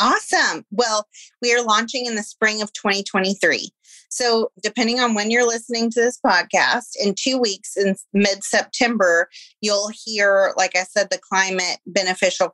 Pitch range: 180-225 Hz